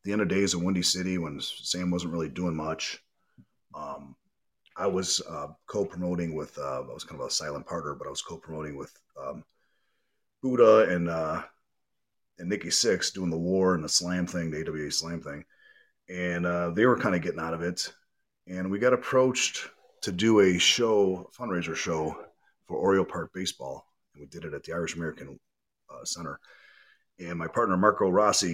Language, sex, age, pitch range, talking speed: English, male, 30-49, 85-110 Hz, 190 wpm